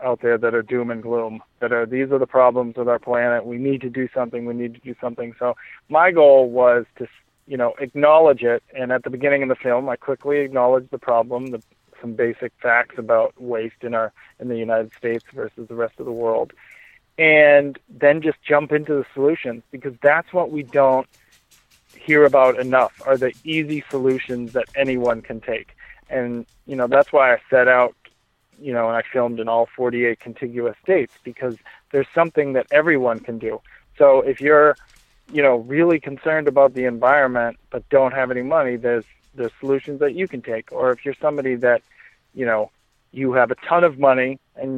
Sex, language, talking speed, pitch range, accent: male, English, 200 wpm, 120-145 Hz, American